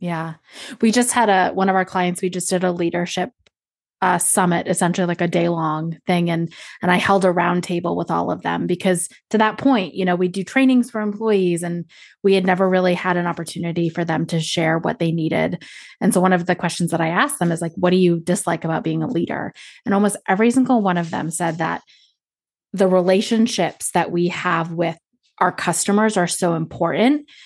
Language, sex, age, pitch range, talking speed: English, female, 20-39, 170-200 Hz, 215 wpm